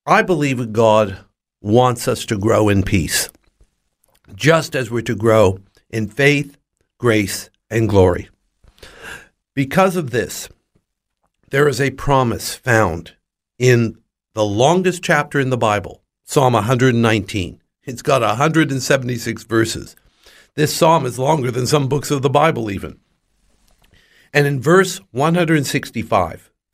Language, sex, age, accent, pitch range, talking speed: English, male, 60-79, American, 105-145 Hz, 125 wpm